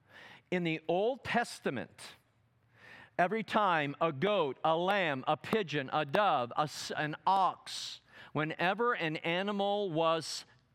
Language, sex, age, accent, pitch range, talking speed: English, male, 50-69, American, 160-205 Hz, 110 wpm